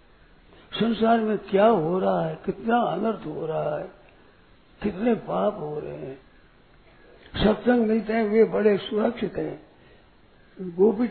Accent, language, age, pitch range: native, Hindi, 60-79, 190-225 Hz